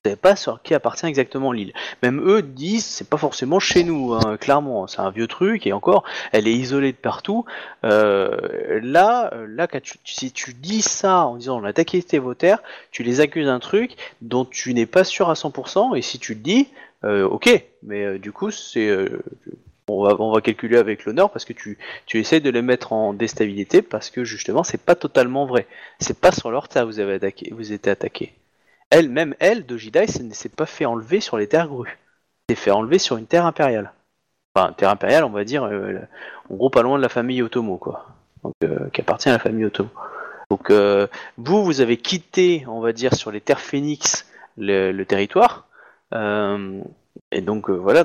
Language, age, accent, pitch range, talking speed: French, 30-49, French, 110-170 Hz, 215 wpm